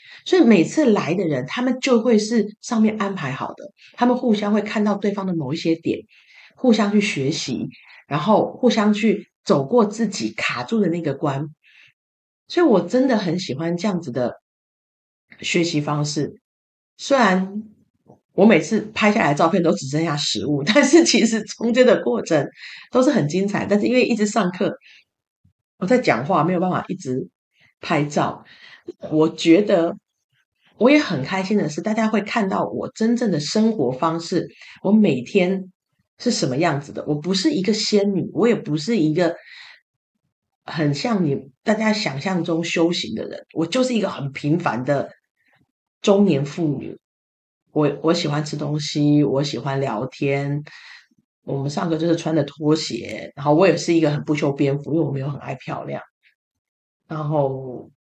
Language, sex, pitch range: Chinese, female, 150-215 Hz